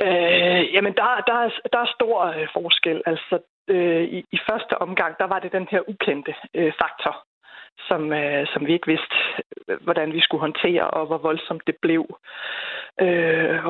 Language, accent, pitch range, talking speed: Danish, native, 160-195 Hz, 170 wpm